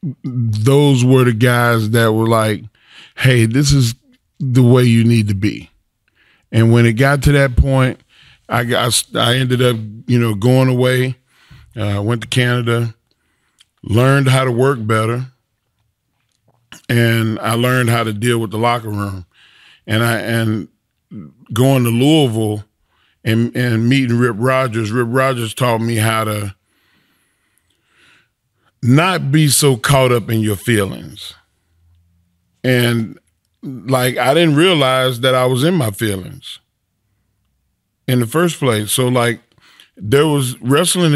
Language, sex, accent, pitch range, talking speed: English, male, American, 115-135 Hz, 140 wpm